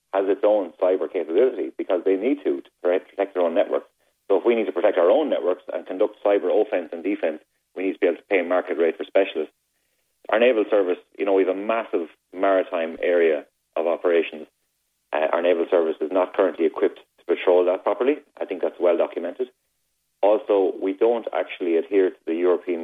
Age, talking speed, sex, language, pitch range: 30-49, 205 wpm, male, English, 350-445 Hz